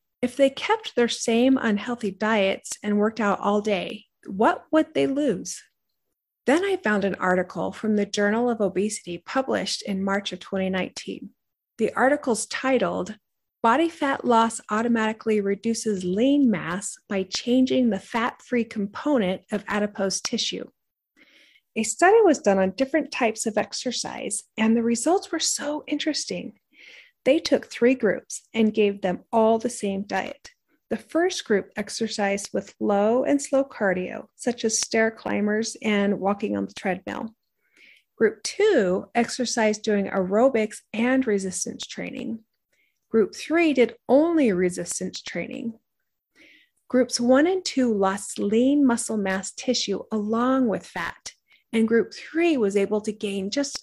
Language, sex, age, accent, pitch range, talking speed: English, female, 30-49, American, 205-265 Hz, 140 wpm